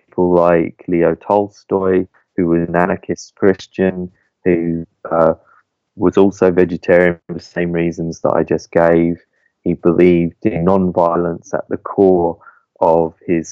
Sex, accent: male, British